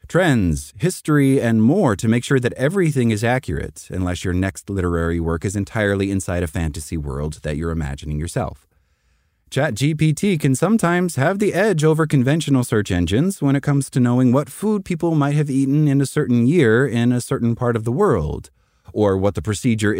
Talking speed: 185 wpm